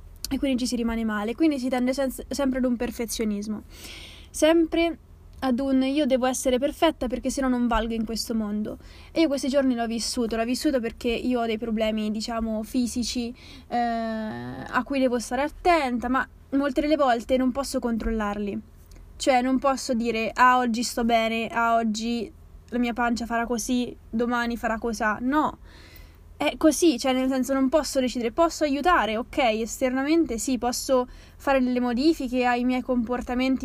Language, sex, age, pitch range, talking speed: Italian, female, 20-39, 230-265 Hz, 170 wpm